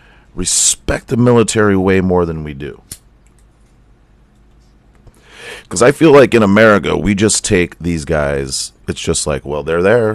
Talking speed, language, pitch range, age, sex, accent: 150 wpm, English, 75-95 Hz, 40-59, male, American